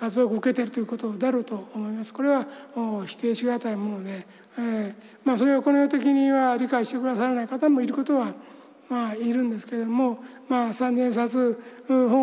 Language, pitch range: Japanese, 230-255 Hz